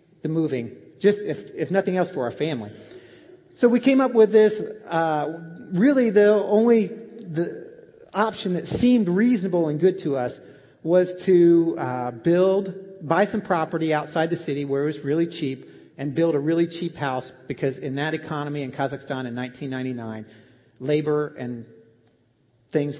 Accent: American